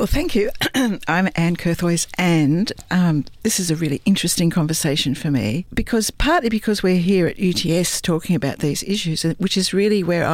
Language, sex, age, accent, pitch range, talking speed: English, female, 60-79, Australian, 155-185 Hz, 180 wpm